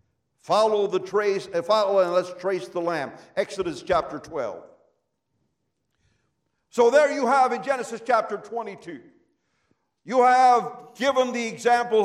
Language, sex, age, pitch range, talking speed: English, male, 60-79, 220-255 Hz, 125 wpm